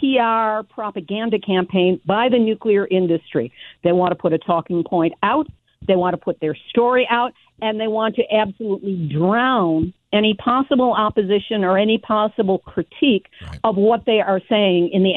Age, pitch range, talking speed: 50-69, 185-240 Hz, 165 wpm